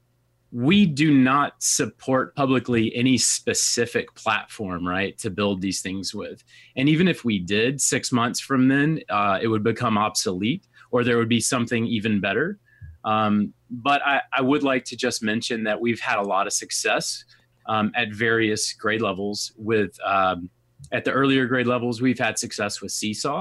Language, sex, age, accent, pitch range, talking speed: English, male, 30-49, American, 105-125 Hz, 175 wpm